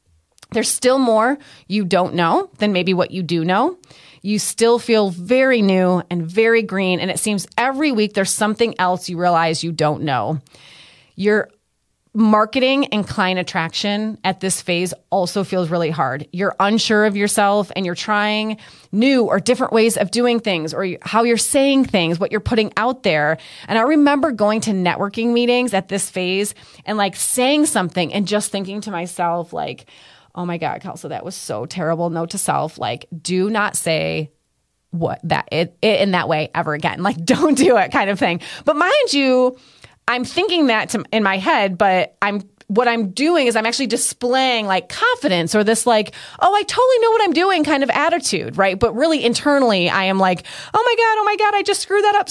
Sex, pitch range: female, 180-245 Hz